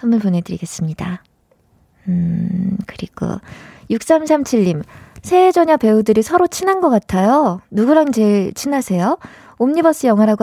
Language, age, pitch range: Korean, 20-39, 185-265 Hz